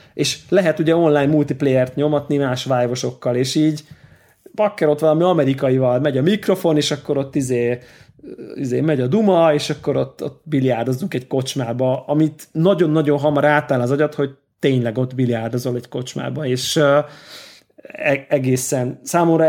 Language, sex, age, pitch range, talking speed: Hungarian, male, 30-49, 130-155 Hz, 150 wpm